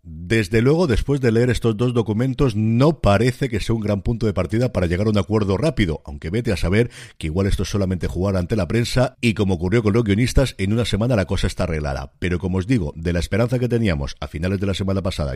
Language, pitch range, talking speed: Spanish, 90-125 Hz, 250 wpm